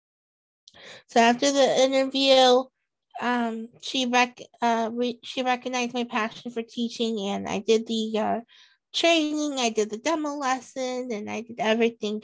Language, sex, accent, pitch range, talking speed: English, female, American, 225-255 Hz, 145 wpm